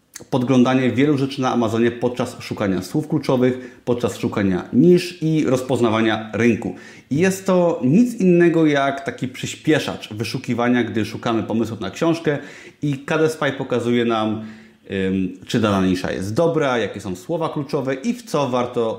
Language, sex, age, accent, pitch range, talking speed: Polish, male, 30-49, native, 115-150 Hz, 140 wpm